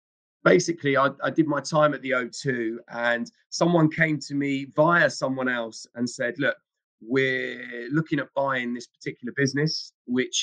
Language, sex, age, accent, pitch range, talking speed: English, male, 30-49, British, 125-150 Hz, 160 wpm